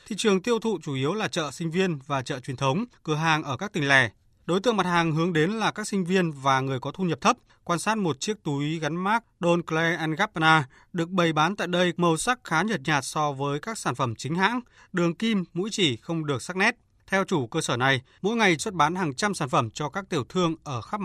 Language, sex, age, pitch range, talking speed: Vietnamese, male, 20-39, 140-190 Hz, 255 wpm